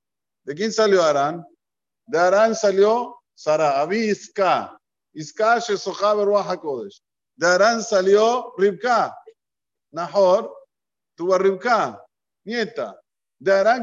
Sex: male